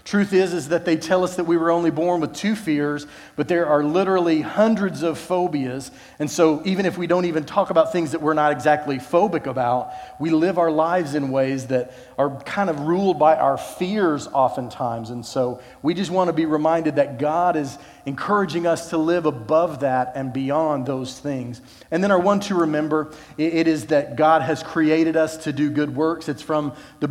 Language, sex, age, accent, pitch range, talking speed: English, male, 40-59, American, 150-185 Hz, 210 wpm